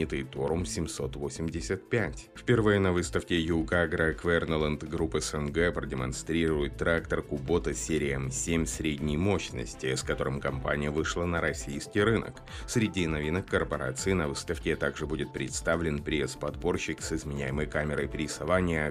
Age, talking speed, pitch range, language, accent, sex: 30-49, 115 wpm, 70-90 Hz, Russian, native, male